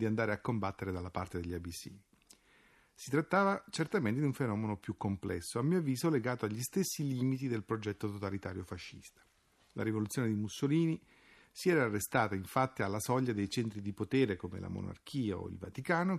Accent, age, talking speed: native, 40-59, 175 wpm